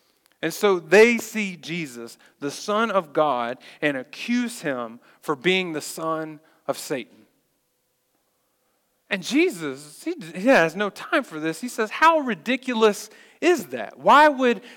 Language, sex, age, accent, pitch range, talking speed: English, male, 40-59, American, 155-205 Hz, 140 wpm